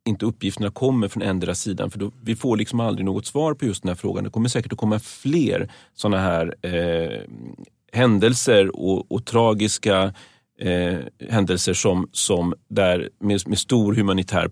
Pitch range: 90-115 Hz